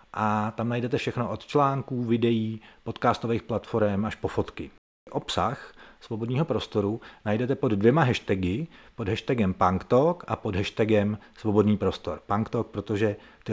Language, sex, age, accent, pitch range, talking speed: Czech, male, 40-59, native, 105-125 Hz, 135 wpm